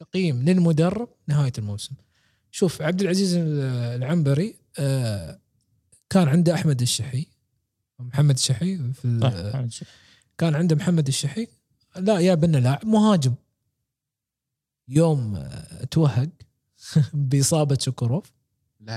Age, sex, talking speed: 20-39, male, 85 wpm